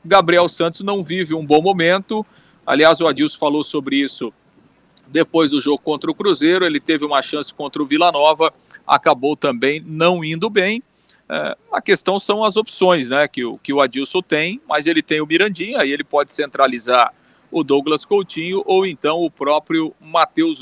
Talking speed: 180 wpm